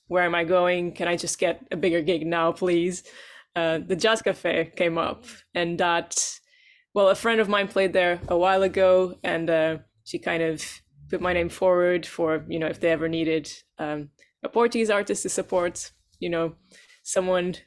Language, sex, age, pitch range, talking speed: English, female, 20-39, 165-195 Hz, 190 wpm